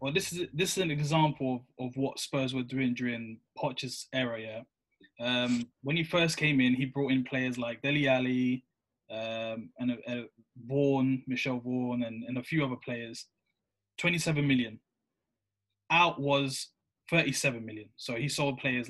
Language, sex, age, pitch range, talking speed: English, male, 20-39, 125-150 Hz, 165 wpm